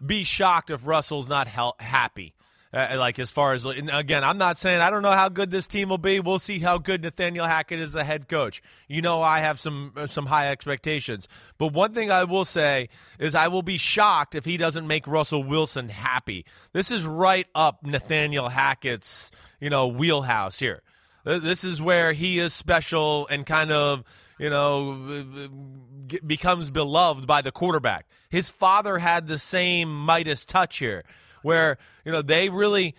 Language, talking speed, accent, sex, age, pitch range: English, 185 wpm, American, male, 30-49, 145-195 Hz